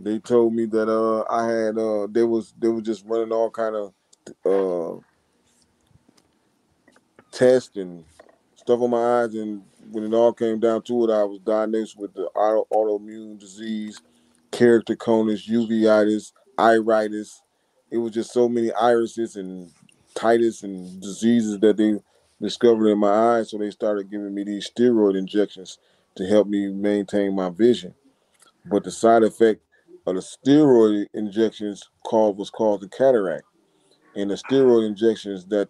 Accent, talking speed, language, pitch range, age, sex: American, 155 wpm, English, 100-115 Hz, 20-39, male